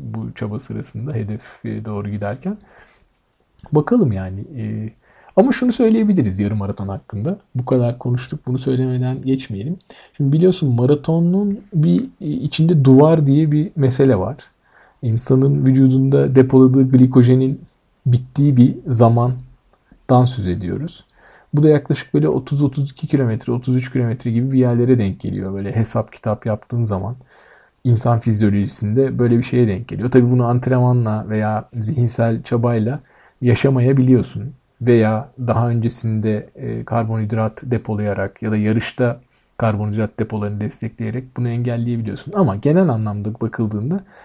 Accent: native